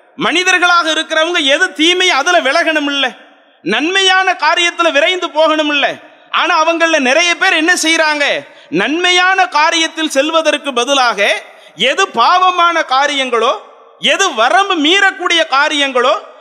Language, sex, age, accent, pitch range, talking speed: English, male, 30-49, Indian, 280-360 Hz, 95 wpm